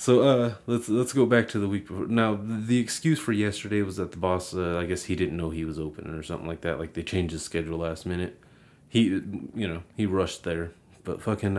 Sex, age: male, 30-49